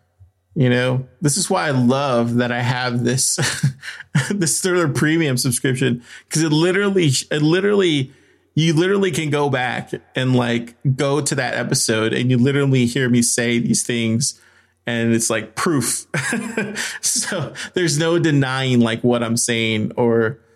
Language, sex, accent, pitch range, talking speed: English, male, American, 115-140 Hz, 150 wpm